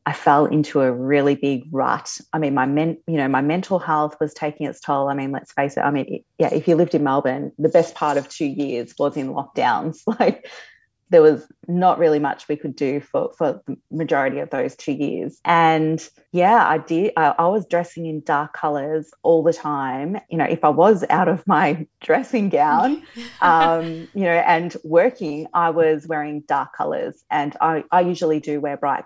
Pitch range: 150-180 Hz